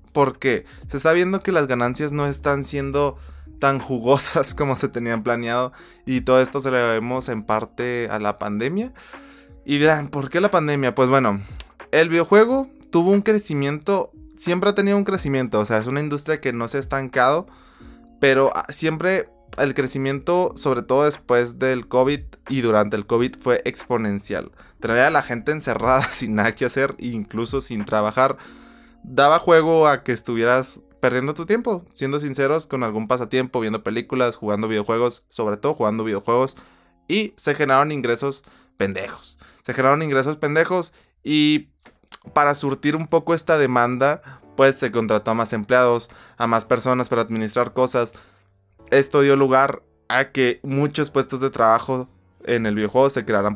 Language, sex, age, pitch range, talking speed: Spanish, male, 20-39, 115-150 Hz, 160 wpm